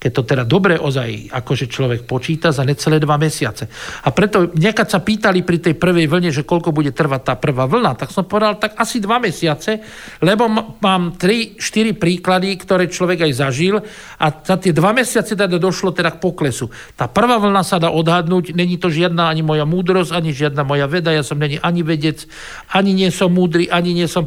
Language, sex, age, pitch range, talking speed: Slovak, male, 50-69, 150-190 Hz, 200 wpm